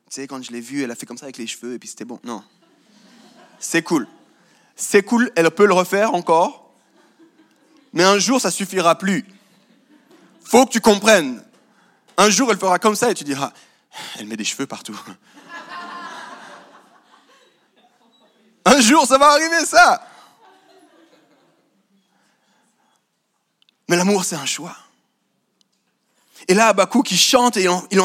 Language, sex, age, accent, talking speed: French, male, 20-39, French, 150 wpm